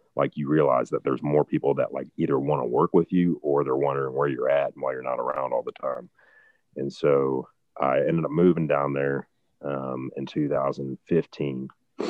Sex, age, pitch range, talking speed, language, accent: male, 30-49, 65-75 Hz, 200 wpm, English, American